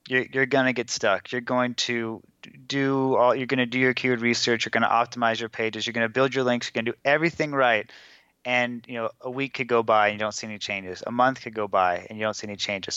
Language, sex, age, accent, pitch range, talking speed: English, male, 20-39, American, 110-130 Hz, 280 wpm